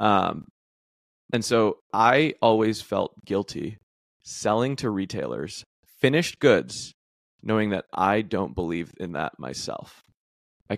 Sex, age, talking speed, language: male, 20-39, 115 wpm, English